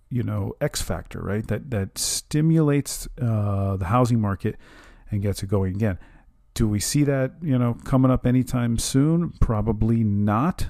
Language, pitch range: English, 100-130 Hz